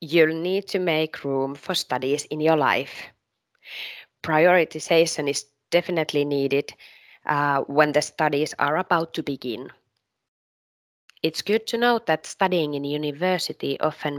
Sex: female